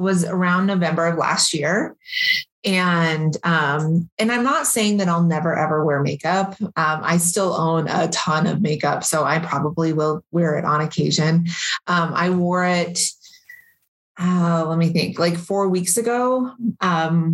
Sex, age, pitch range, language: female, 30-49, 160-195 Hz, English